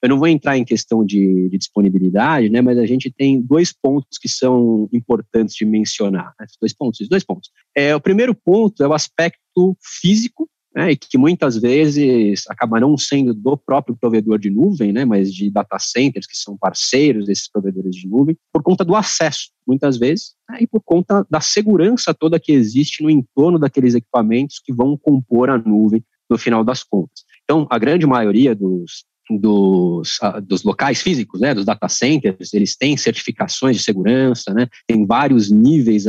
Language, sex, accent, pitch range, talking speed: Portuguese, male, Brazilian, 110-155 Hz, 185 wpm